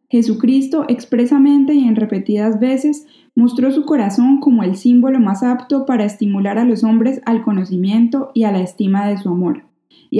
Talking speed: 170 wpm